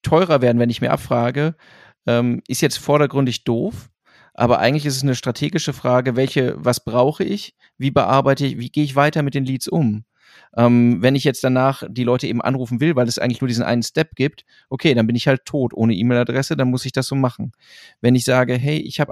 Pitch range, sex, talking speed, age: 120-145 Hz, male, 220 wpm, 30-49